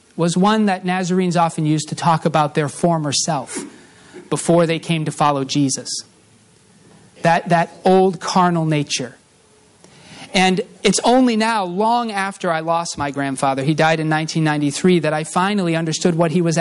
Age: 40-59